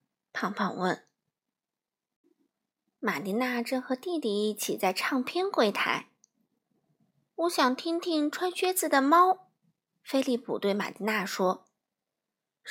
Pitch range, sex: 225-325 Hz, female